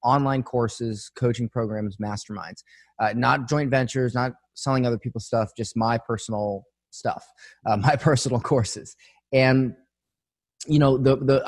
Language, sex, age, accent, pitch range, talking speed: English, male, 20-39, American, 110-130 Hz, 140 wpm